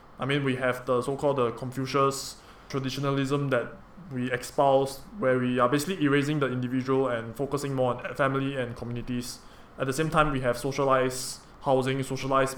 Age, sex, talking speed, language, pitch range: 20-39, male, 165 wpm, English, 125-160 Hz